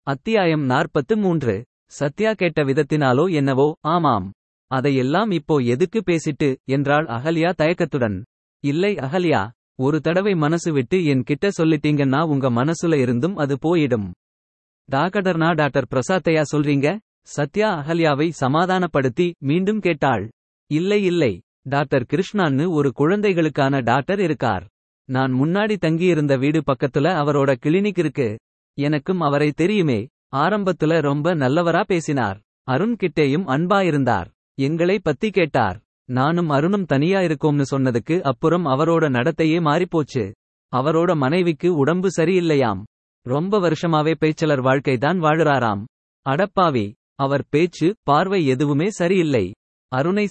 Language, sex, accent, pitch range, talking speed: Tamil, male, native, 135-175 Hz, 105 wpm